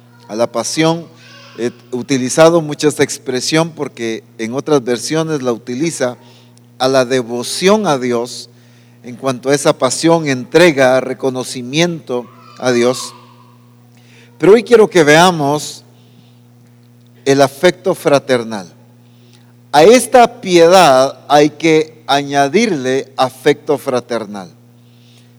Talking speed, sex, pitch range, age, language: 105 wpm, male, 120-170 Hz, 50-69, English